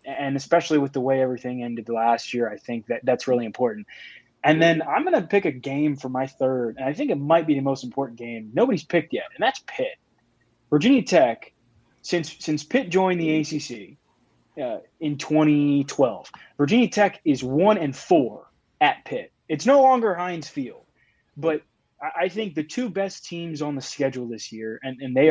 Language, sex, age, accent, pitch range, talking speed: English, male, 20-39, American, 130-160 Hz, 190 wpm